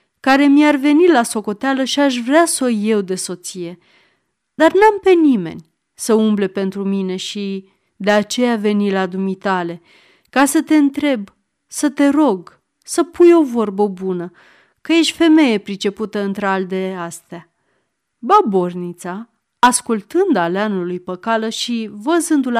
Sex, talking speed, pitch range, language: female, 140 wpm, 195-275 Hz, Romanian